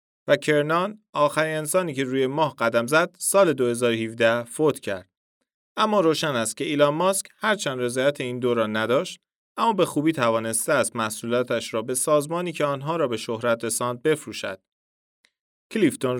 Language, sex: Persian, male